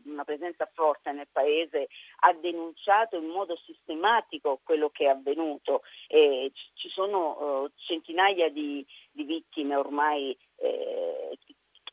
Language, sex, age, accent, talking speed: Italian, female, 40-59, native, 120 wpm